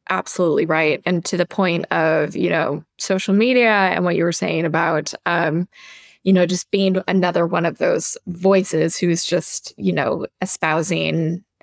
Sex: female